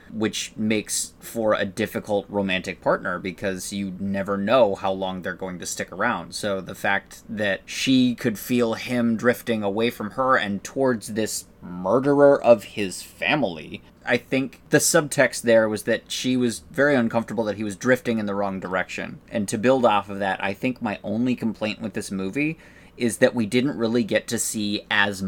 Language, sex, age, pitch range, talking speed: English, male, 20-39, 100-120 Hz, 190 wpm